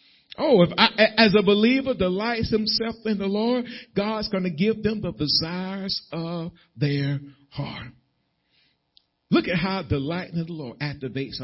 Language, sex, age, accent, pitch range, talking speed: English, male, 50-69, American, 140-205 Hz, 145 wpm